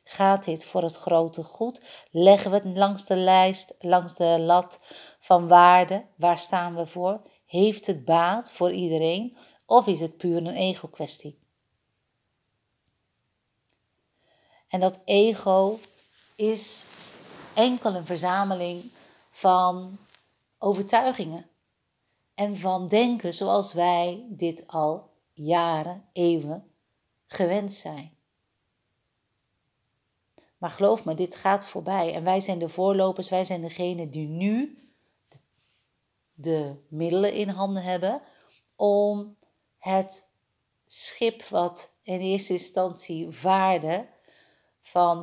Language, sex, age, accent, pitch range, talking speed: Dutch, female, 50-69, Dutch, 160-195 Hz, 110 wpm